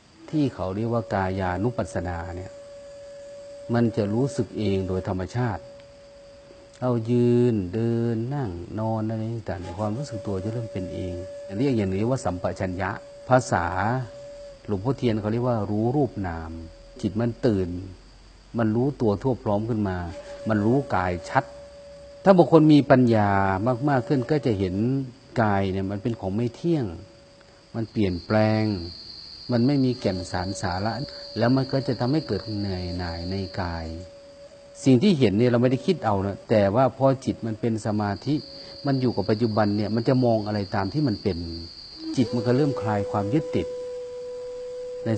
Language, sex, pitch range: Thai, male, 100-135 Hz